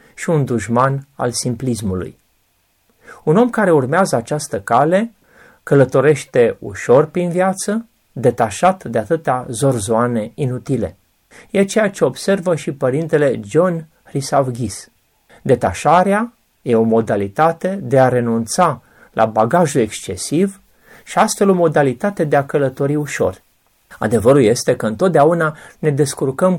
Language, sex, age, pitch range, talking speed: Romanian, male, 30-49, 125-180 Hz, 115 wpm